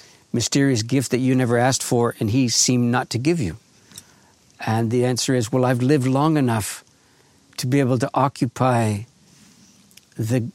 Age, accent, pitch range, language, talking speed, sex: 60-79, American, 115-135 Hz, English, 165 wpm, male